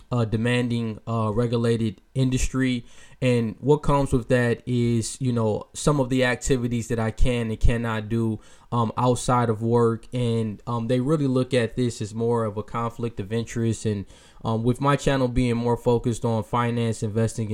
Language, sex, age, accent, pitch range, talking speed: English, male, 10-29, American, 115-130 Hz, 180 wpm